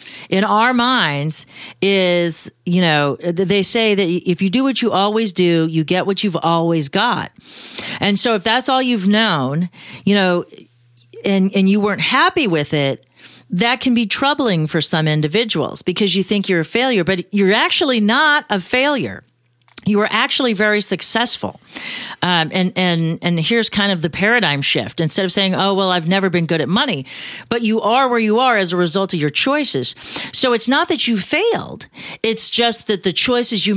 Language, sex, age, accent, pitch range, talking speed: English, female, 40-59, American, 170-225 Hz, 190 wpm